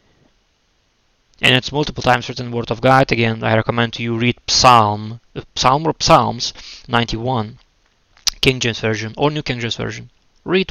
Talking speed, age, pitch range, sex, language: 155 wpm, 20-39, 110-130 Hz, male, English